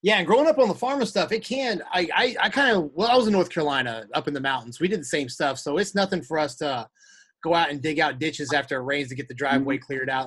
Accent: American